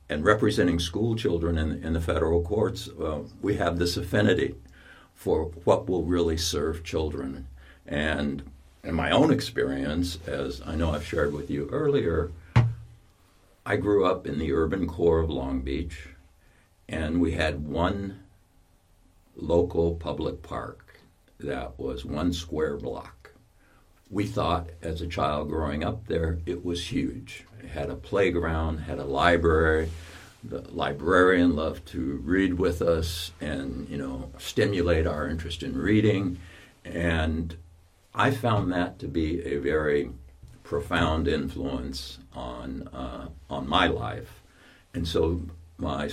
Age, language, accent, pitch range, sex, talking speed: 60-79, English, American, 75-90 Hz, male, 135 wpm